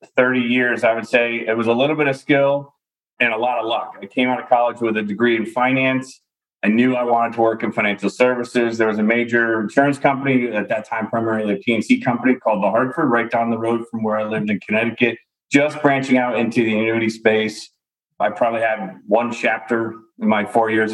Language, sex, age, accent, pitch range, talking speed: English, male, 30-49, American, 115-130 Hz, 225 wpm